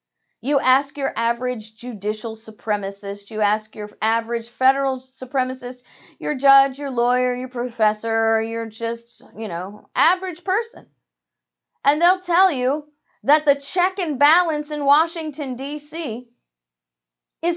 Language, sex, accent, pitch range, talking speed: English, female, American, 225-275 Hz, 125 wpm